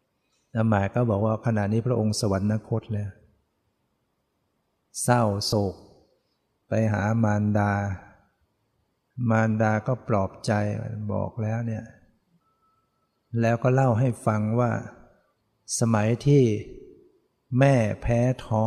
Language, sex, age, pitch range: Thai, male, 60-79, 110-125 Hz